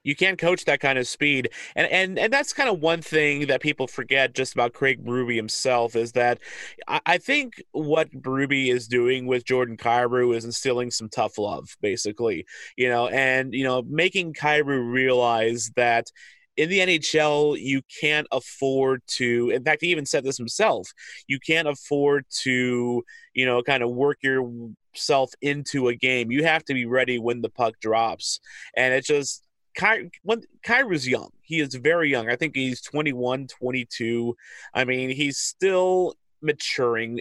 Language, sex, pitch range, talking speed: English, male, 120-145 Hz, 170 wpm